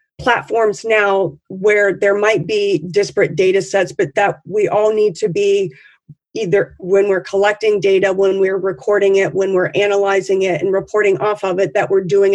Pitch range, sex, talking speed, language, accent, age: 185-205 Hz, female, 180 wpm, English, American, 40-59